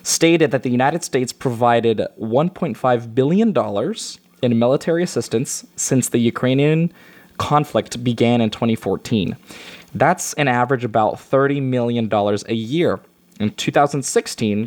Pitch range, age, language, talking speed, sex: 115-150 Hz, 20-39, English, 120 wpm, male